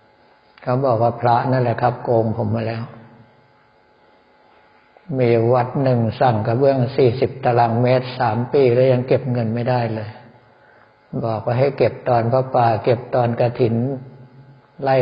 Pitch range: 120-130 Hz